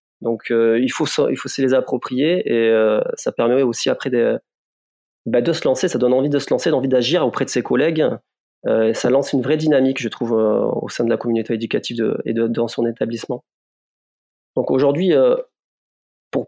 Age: 30-49